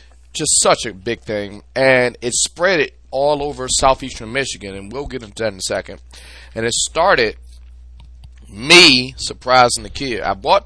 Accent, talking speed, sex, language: American, 170 wpm, male, English